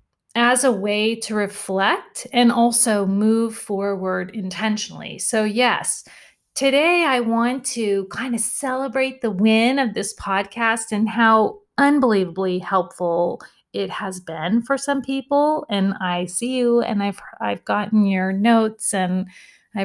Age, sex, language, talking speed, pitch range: 30-49, female, English, 140 wpm, 190-235 Hz